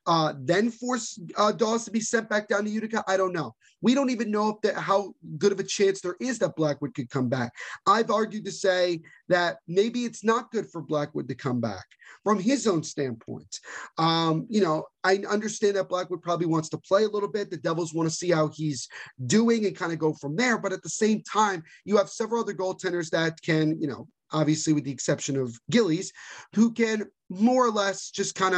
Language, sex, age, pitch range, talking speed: English, male, 30-49, 160-205 Hz, 225 wpm